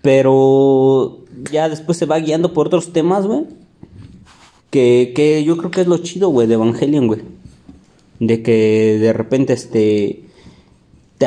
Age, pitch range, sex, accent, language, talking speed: 20-39, 115-150 Hz, male, Mexican, Spanish, 150 wpm